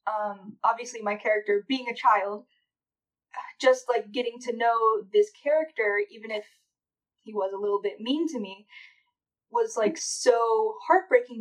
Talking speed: 145 wpm